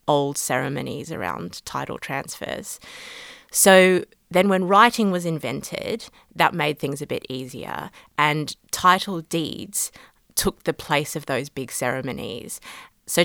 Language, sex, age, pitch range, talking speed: English, female, 30-49, 145-180 Hz, 125 wpm